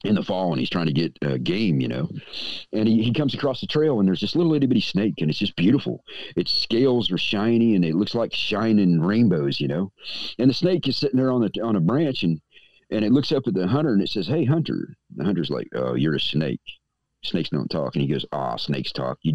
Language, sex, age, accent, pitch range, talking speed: English, male, 50-69, American, 85-135 Hz, 265 wpm